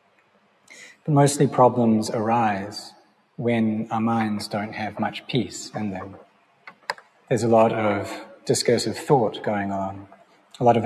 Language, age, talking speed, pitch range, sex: English, 30-49, 125 wpm, 105-125 Hz, male